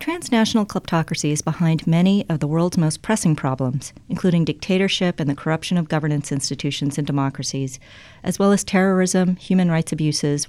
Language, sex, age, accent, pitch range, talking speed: English, female, 50-69, American, 145-185 Hz, 160 wpm